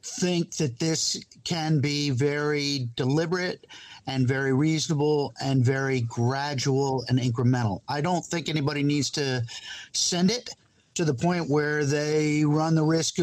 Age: 50-69